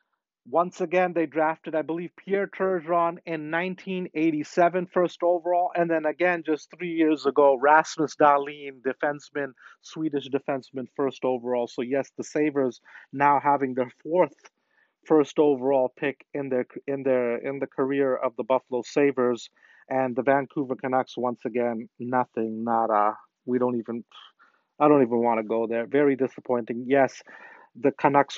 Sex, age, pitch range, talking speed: male, 30-49, 135-175 Hz, 150 wpm